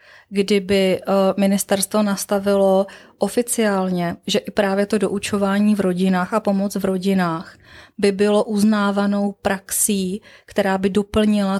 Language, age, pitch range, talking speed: Czech, 20-39, 180-200 Hz, 115 wpm